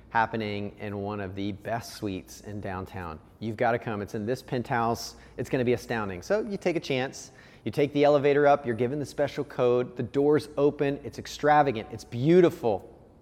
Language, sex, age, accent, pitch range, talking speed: English, male, 30-49, American, 115-155 Hz, 190 wpm